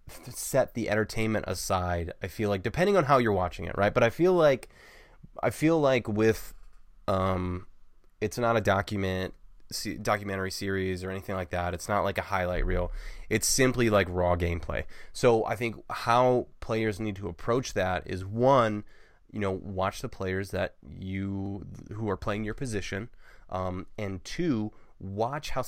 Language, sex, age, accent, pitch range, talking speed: English, male, 20-39, American, 90-115 Hz, 170 wpm